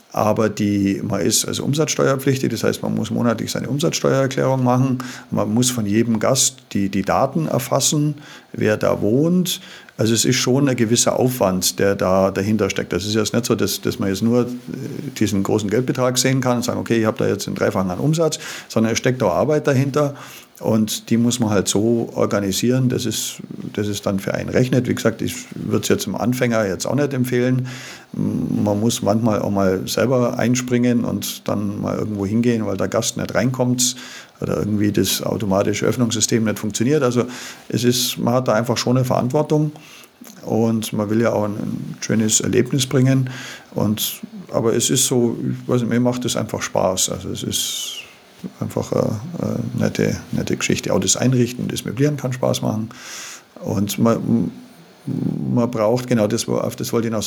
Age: 50-69